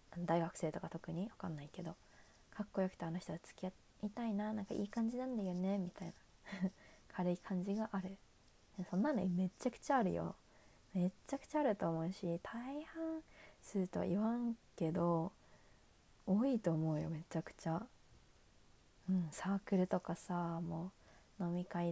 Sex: female